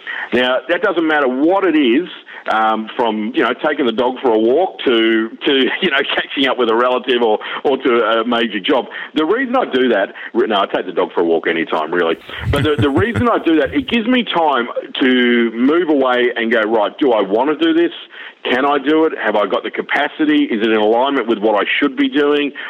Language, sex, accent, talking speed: English, male, Australian, 240 wpm